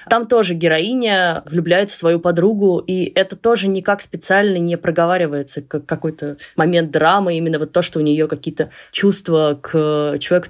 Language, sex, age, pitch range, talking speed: Russian, female, 20-39, 150-185 Hz, 160 wpm